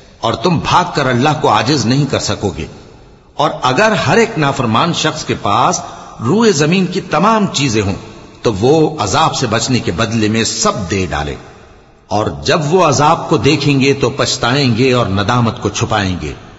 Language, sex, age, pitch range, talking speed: English, male, 60-79, 110-150 Hz, 165 wpm